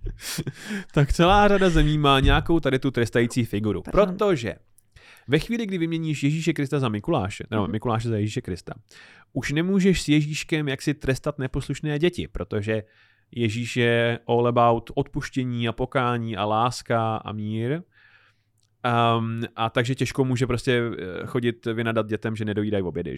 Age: 30-49